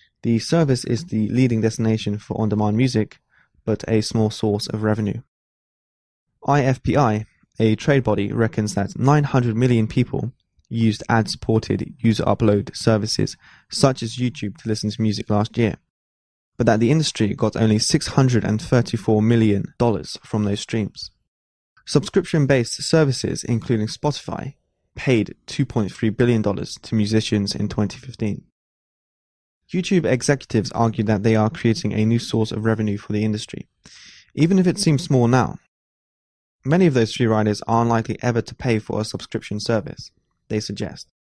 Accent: British